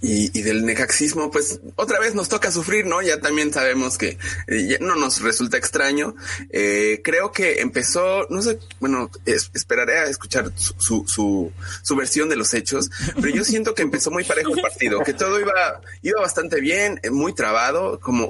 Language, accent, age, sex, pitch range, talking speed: Spanish, Mexican, 30-49, male, 95-140 Hz, 185 wpm